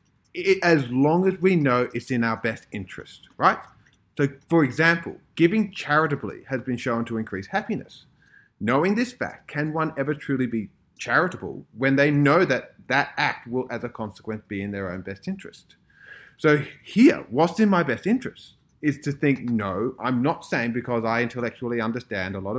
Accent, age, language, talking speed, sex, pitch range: Australian, 30-49, English, 180 wpm, male, 110-145 Hz